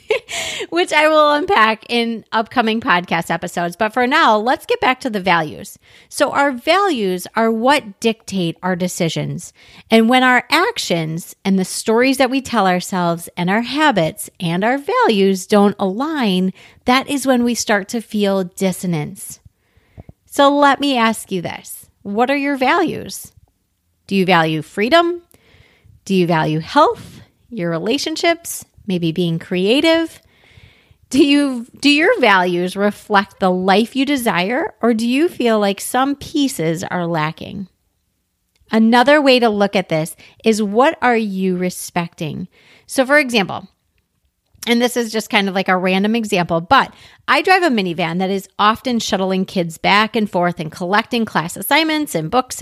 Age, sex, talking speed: 30-49, female, 155 wpm